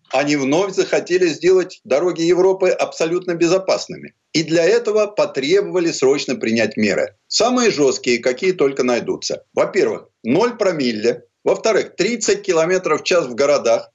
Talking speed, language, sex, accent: 130 wpm, Russian, male, native